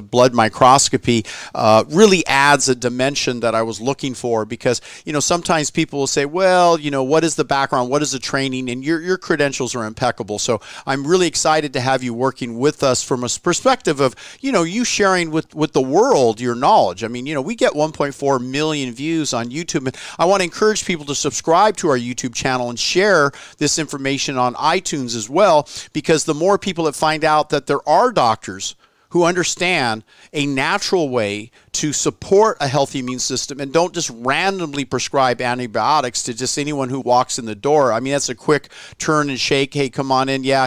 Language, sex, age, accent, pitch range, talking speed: English, male, 40-59, American, 125-160 Hz, 205 wpm